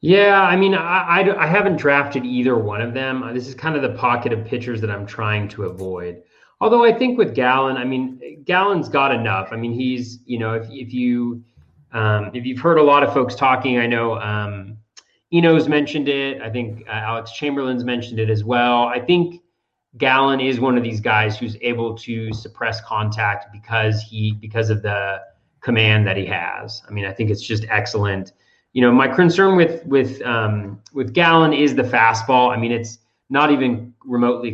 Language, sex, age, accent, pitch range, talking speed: English, male, 30-49, American, 110-135 Hz, 200 wpm